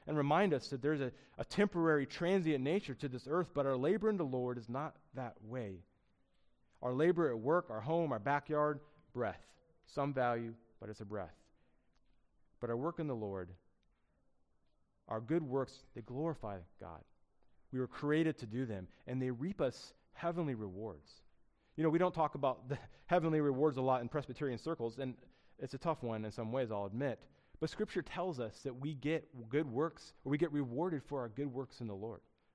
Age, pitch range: 30-49, 120-160 Hz